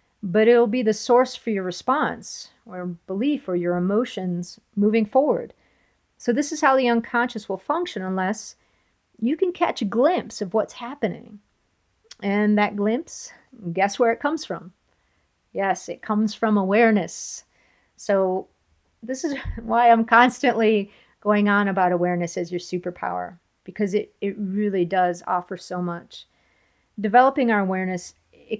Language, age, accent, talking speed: English, 40-59, American, 145 wpm